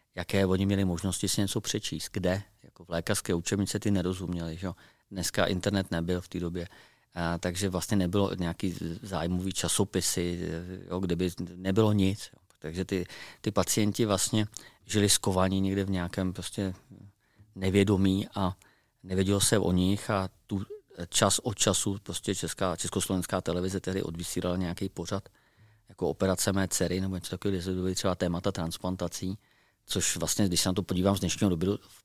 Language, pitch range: Czech, 90-100 Hz